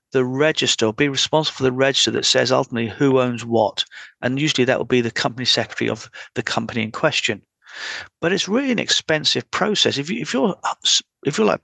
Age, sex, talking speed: 40-59, male, 205 wpm